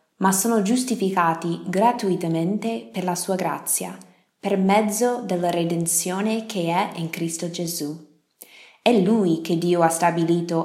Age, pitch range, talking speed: 20-39, 165-220 Hz, 130 wpm